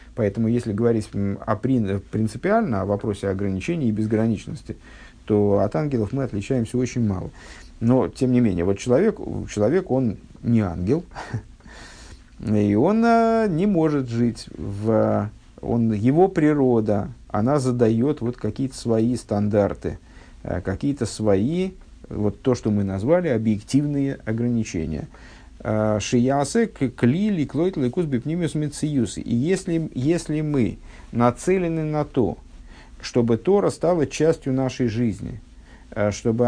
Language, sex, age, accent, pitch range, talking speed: Russian, male, 50-69, native, 105-135 Hz, 115 wpm